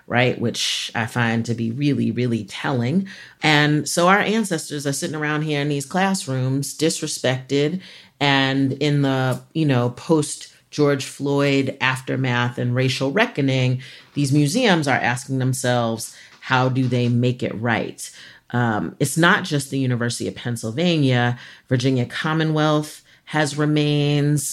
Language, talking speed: English, 135 wpm